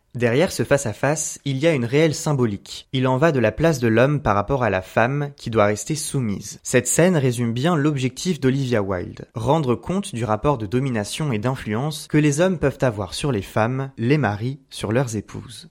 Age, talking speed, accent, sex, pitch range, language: 20-39, 205 wpm, French, male, 115-150 Hz, French